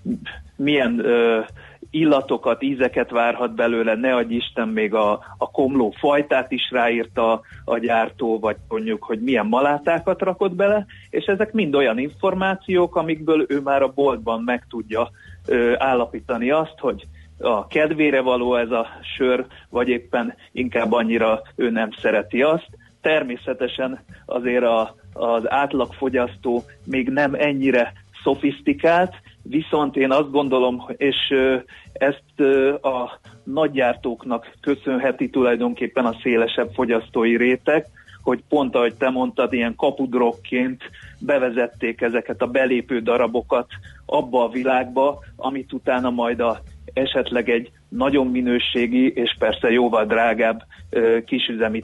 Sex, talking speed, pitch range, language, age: male, 120 wpm, 115-135 Hz, Hungarian, 30-49